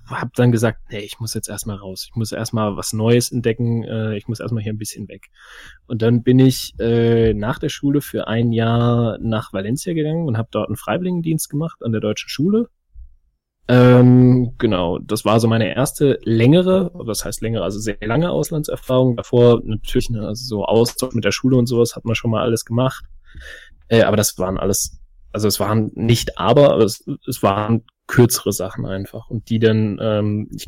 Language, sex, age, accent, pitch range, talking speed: German, male, 20-39, German, 105-125 Hz, 195 wpm